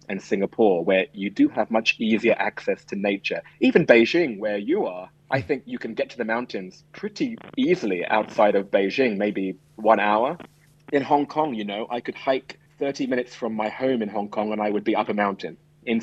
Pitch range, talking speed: 105-135 Hz, 210 wpm